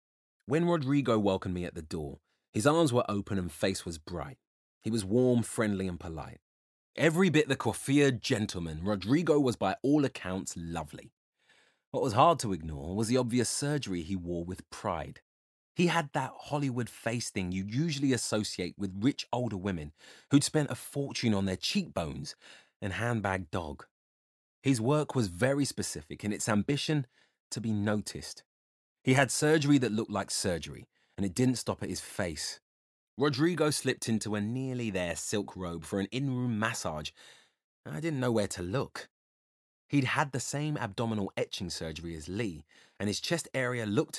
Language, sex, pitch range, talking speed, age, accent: English, male, 95-135 Hz, 170 wpm, 30-49, British